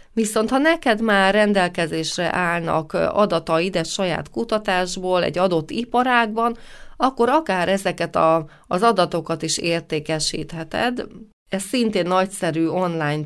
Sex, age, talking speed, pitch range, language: female, 30-49, 115 wpm, 170-225 Hz, Hungarian